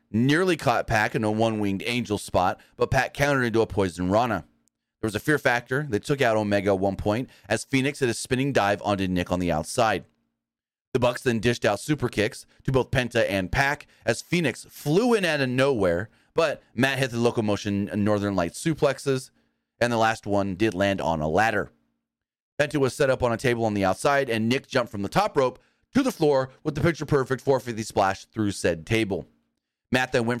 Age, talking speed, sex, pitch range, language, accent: 30-49, 205 wpm, male, 105-140 Hz, English, American